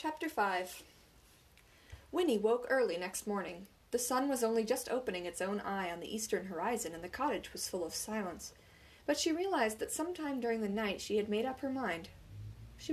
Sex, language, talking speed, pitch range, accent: female, English, 195 wpm, 180-270 Hz, American